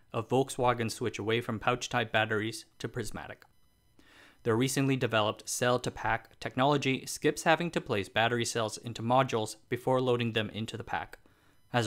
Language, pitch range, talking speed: English, 110-125 Hz, 145 wpm